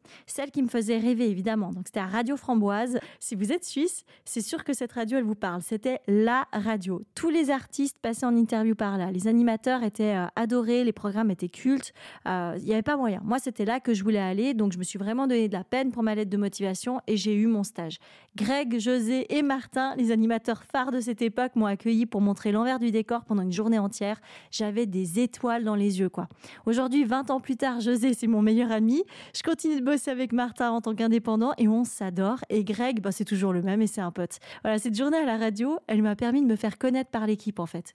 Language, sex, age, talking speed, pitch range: French, female, 30-49, 245 wpm, 210-250 Hz